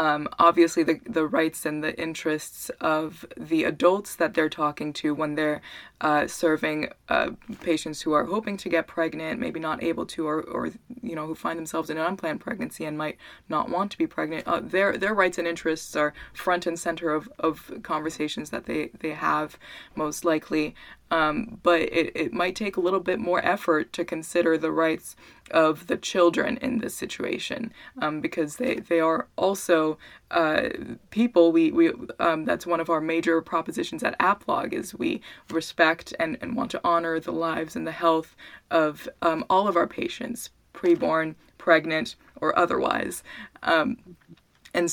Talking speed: 180 wpm